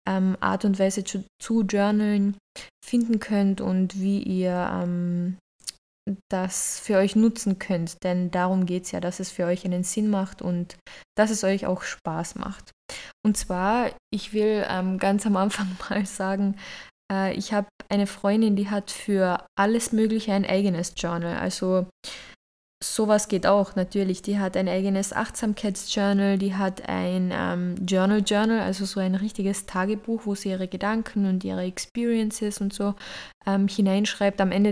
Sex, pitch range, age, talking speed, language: female, 185-215 Hz, 20-39, 160 wpm, German